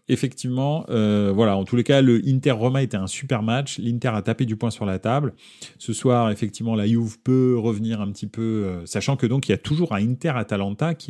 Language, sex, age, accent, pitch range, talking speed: French, male, 30-49, French, 105-130 Hz, 230 wpm